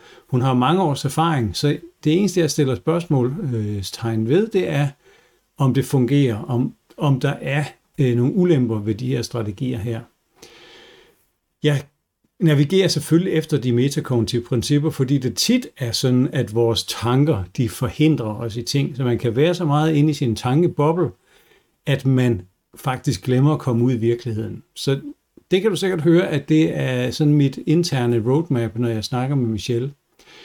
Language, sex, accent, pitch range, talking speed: Danish, male, native, 120-155 Hz, 170 wpm